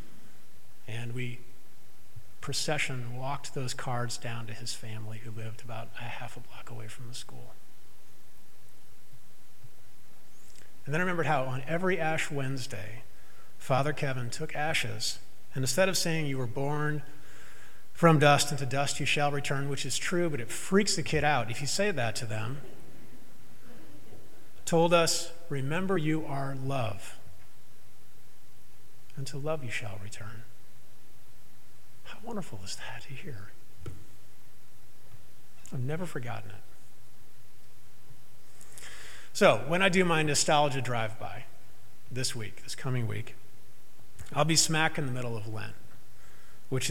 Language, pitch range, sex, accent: English, 115-145 Hz, male, American